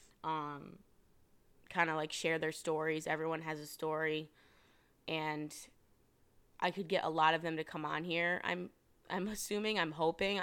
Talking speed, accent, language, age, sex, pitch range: 160 wpm, American, English, 20-39, female, 155-180 Hz